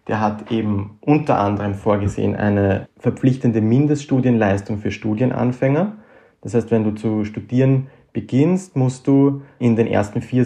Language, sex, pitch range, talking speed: German, male, 105-125 Hz, 140 wpm